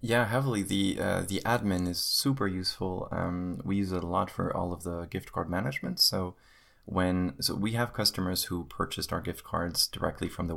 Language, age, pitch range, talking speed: English, 20-39, 85-95 Hz, 205 wpm